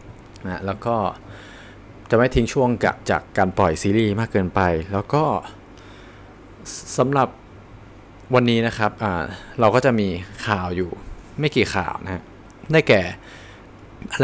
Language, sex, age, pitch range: Thai, male, 20-39, 95-120 Hz